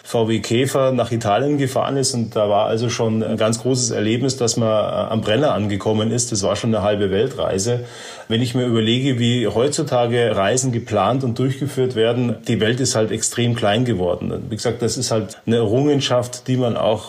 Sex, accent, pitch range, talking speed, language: male, German, 110-130 Hz, 195 wpm, German